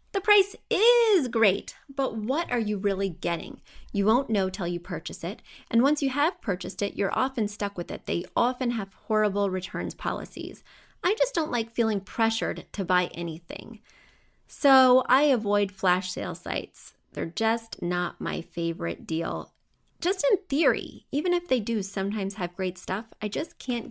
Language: English